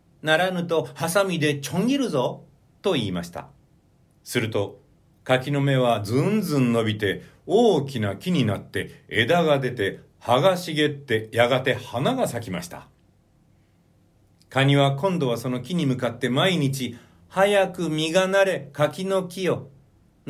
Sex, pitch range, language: male, 125-170 Hz, Japanese